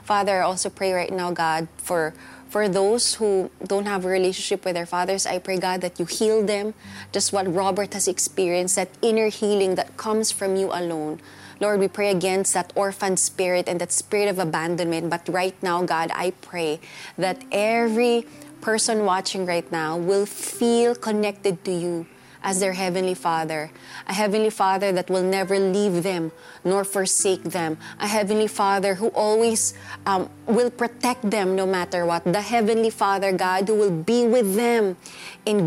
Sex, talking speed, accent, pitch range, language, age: female, 175 wpm, native, 185-215 Hz, Filipino, 20-39